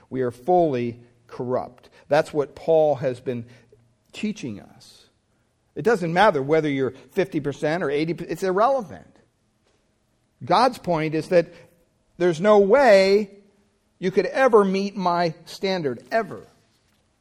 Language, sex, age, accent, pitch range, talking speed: English, male, 50-69, American, 130-180 Hz, 120 wpm